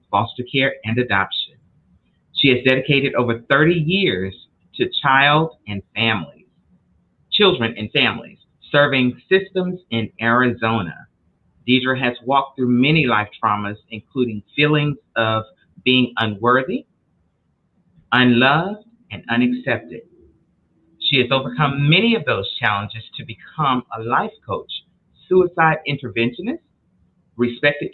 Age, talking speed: 40-59, 110 wpm